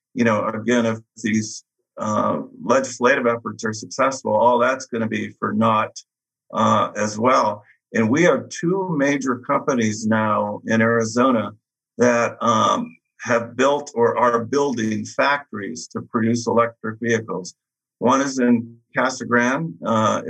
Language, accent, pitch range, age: English, American, 110-125 Hz, 50-69